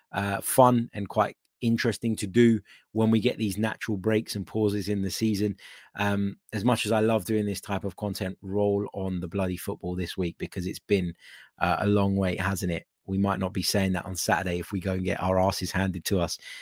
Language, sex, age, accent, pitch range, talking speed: English, male, 20-39, British, 95-120 Hz, 225 wpm